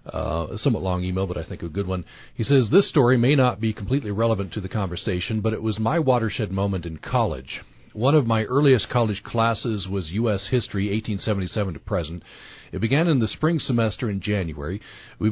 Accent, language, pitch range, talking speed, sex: American, English, 95-120 Hz, 210 wpm, male